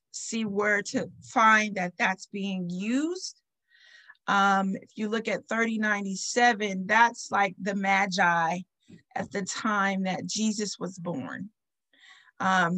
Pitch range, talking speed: 190-225 Hz, 120 wpm